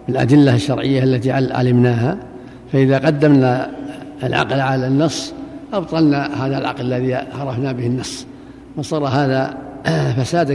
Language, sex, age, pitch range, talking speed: Arabic, male, 60-79, 125-150 Hz, 110 wpm